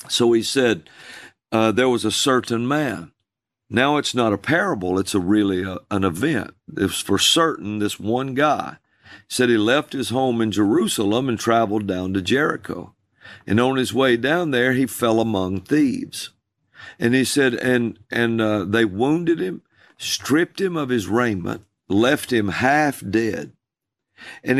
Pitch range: 105-140 Hz